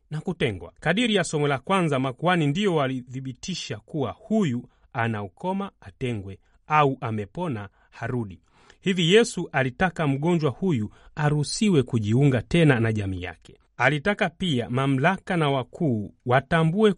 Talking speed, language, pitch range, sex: 125 wpm, Swahili, 110-165 Hz, male